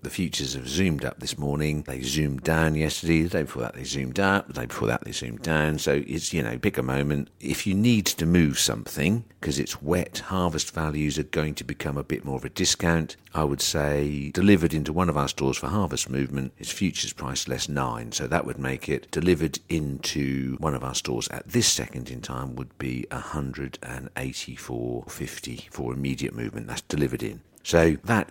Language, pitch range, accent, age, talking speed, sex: English, 65-85 Hz, British, 50-69, 205 wpm, male